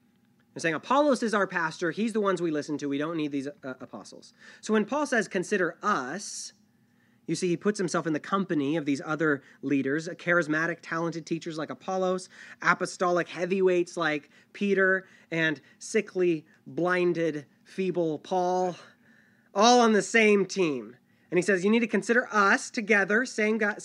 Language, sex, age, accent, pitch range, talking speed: English, male, 30-49, American, 140-195 Hz, 165 wpm